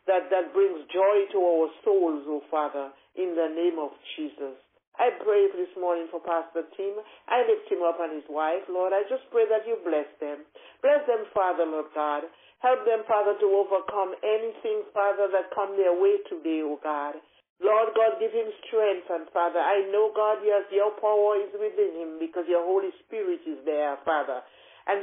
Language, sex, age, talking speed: English, male, 60-79, 190 wpm